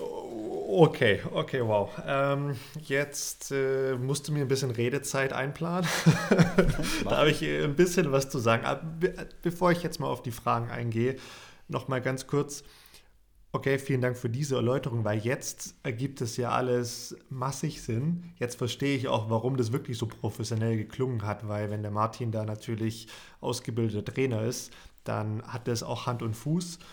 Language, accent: German, German